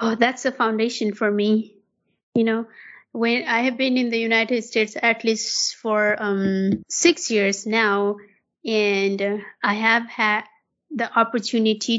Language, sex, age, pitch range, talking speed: English, female, 30-49, 210-245 Hz, 145 wpm